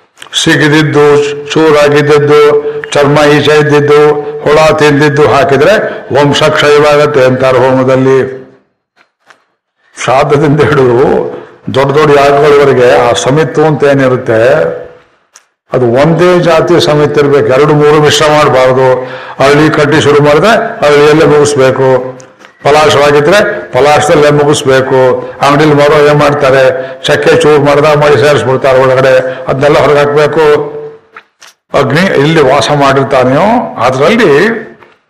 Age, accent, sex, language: 60-79, native, male, Kannada